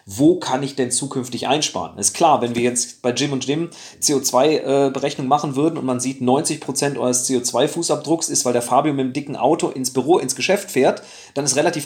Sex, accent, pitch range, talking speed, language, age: male, German, 135-190 Hz, 215 wpm, German, 40-59